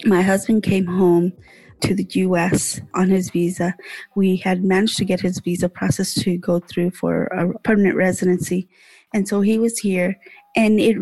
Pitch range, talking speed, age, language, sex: 185-220 Hz, 175 wpm, 30-49, English, female